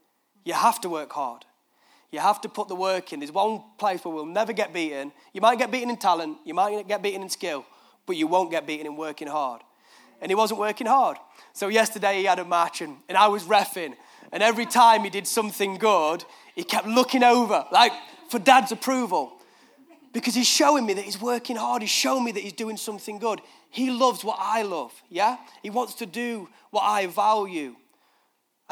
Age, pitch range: 20-39, 180-245 Hz